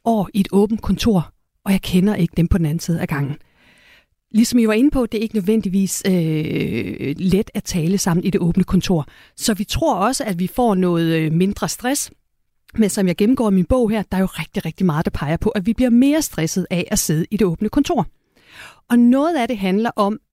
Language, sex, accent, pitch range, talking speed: Danish, female, native, 180-230 Hz, 235 wpm